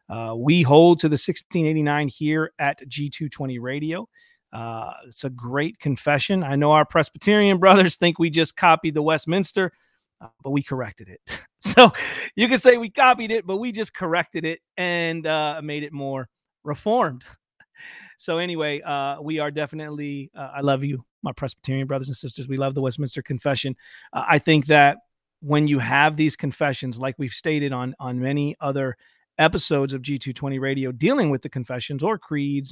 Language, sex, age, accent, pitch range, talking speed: English, male, 40-59, American, 140-170 Hz, 175 wpm